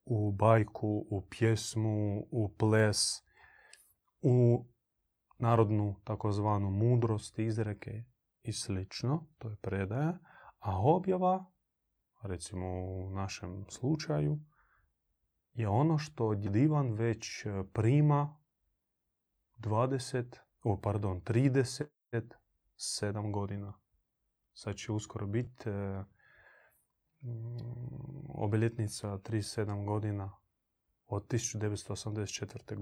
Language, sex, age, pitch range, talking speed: Croatian, male, 30-49, 100-120 Hz, 75 wpm